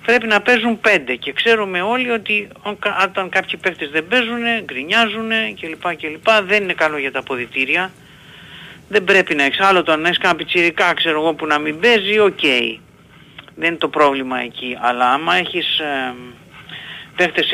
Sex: male